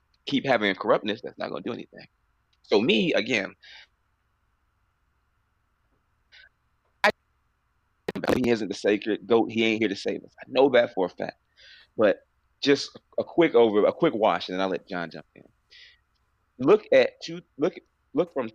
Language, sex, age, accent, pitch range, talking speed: English, male, 30-49, American, 100-145 Hz, 170 wpm